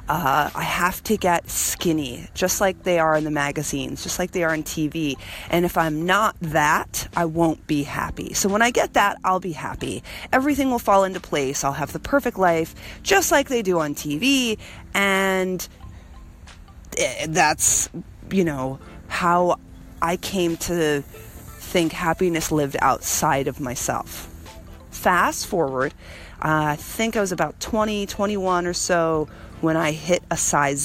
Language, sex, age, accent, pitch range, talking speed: English, female, 30-49, American, 145-185 Hz, 160 wpm